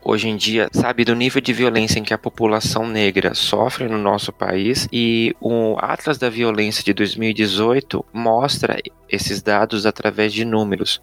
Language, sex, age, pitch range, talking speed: Portuguese, male, 20-39, 110-125 Hz, 165 wpm